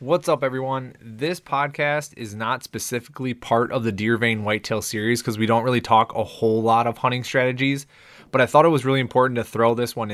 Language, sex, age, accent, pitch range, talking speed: English, male, 20-39, American, 105-125 Hz, 220 wpm